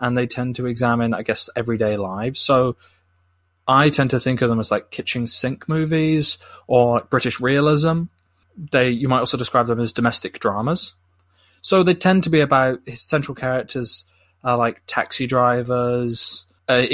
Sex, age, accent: male, 20-39, British